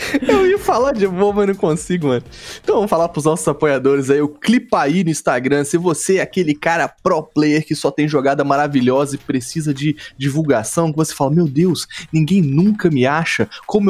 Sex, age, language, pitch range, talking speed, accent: male, 20-39, Portuguese, 140-195 Hz, 205 wpm, Brazilian